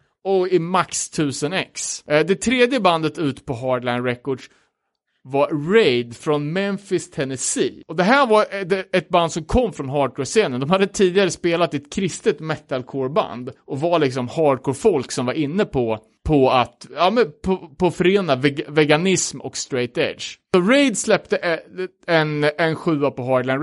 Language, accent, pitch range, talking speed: Swedish, Norwegian, 135-185 Hz, 155 wpm